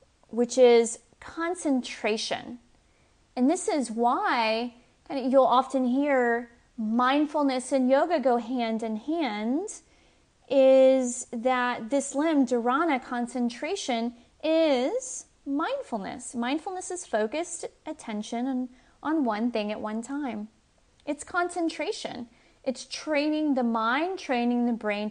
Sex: female